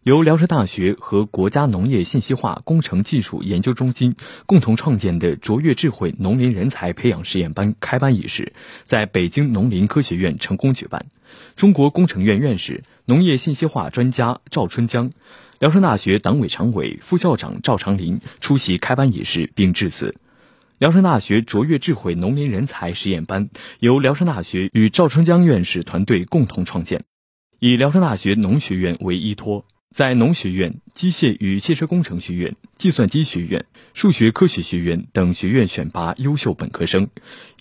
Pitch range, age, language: 95-150 Hz, 30-49, Chinese